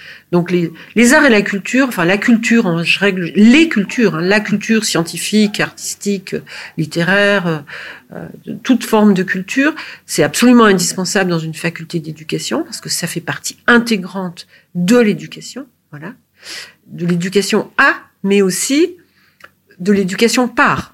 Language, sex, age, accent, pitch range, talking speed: French, female, 50-69, French, 175-210 Hz, 145 wpm